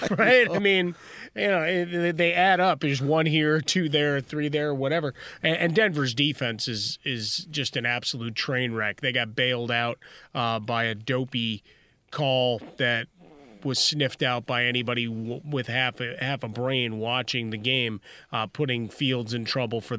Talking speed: 170 wpm